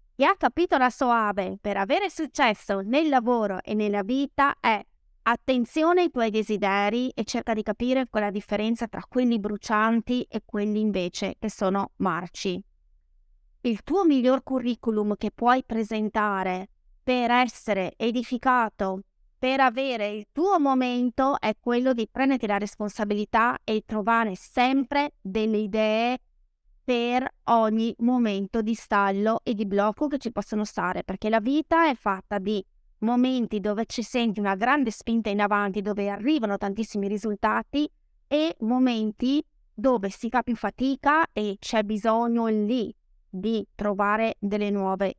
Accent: native